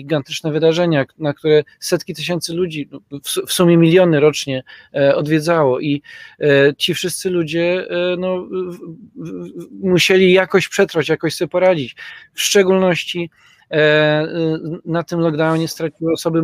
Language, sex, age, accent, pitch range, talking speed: Polish, male, 40-59, native, 140-165 Hz, 110 wpm